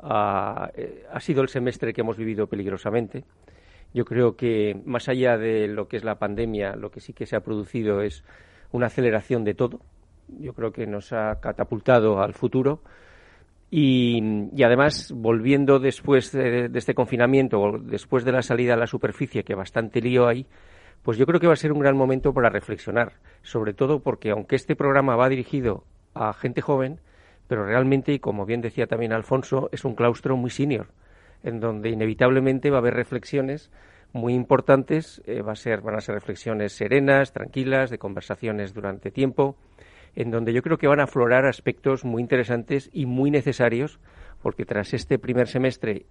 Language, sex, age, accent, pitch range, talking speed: Spanish, male, 40-59, Spanish, 110-135 Hz, 175 wpm